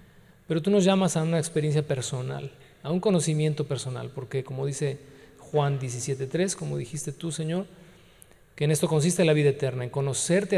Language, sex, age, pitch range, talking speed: Spanish, male, 40-59, 135-175 Hz, 170 wpm